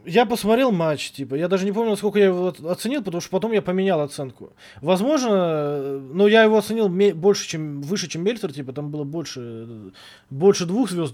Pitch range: 150-200 Hz